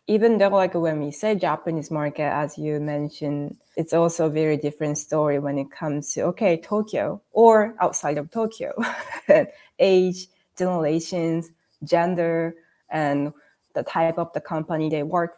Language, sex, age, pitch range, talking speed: English, female, 20-39, 165-220 Hz, 150 wpm